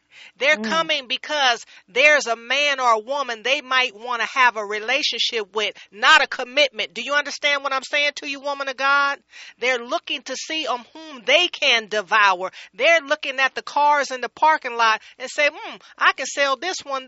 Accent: American